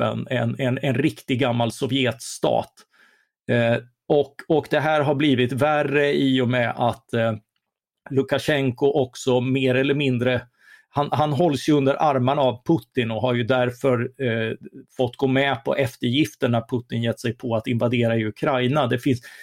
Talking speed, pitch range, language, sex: 160 wpm, 120-140 Hz, Swedish, male